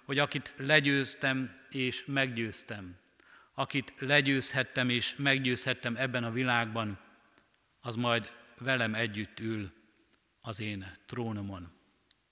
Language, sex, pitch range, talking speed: Hungarian, male, 110-130 Hz, 95 wpm